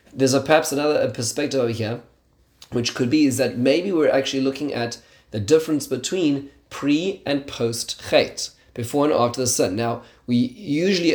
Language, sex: English, male